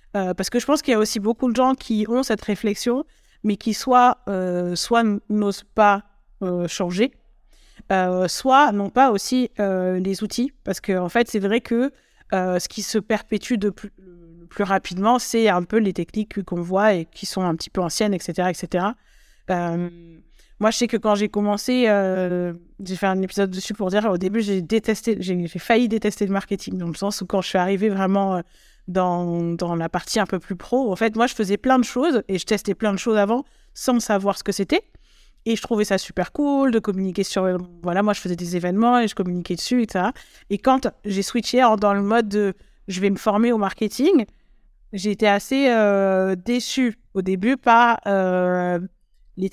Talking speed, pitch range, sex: 210 wpm, 185-225 Hz, female